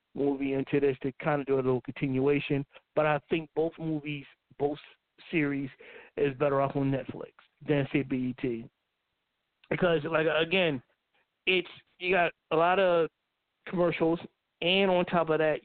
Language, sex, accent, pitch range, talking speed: English, male, American, 150-185 Hz, 150 wpm